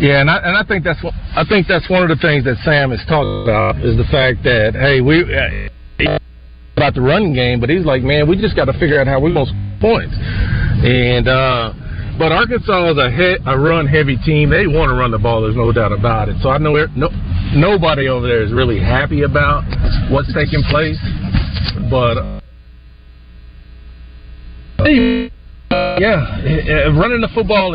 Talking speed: 190 wpm